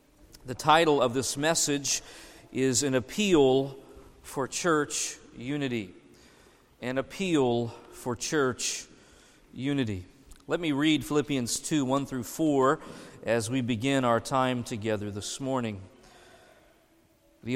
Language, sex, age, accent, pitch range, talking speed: English, male, 40-59, American, 130-180 Hz, 115 wpm